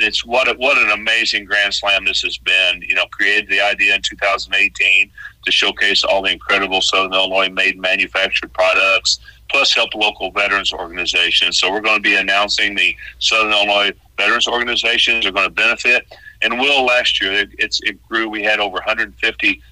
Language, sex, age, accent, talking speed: English, male, 50-69, American, 185 wpm